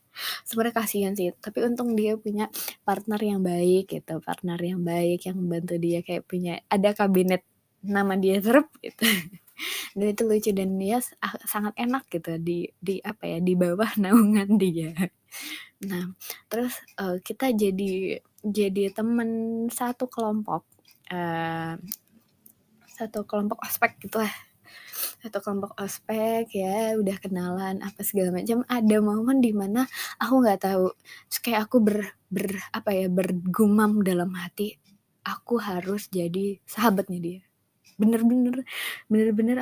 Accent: native